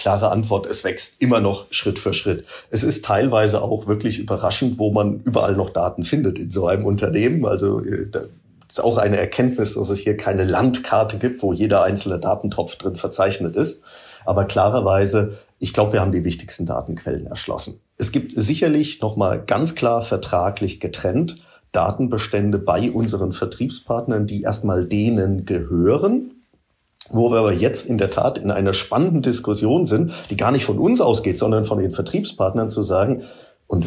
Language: German